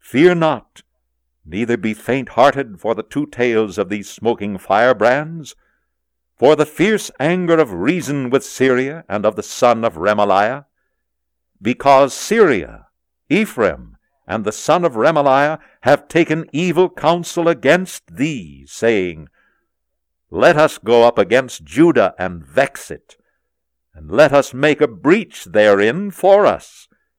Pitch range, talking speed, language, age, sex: 100-165 Hz, 130 wpm, English, 60-79, male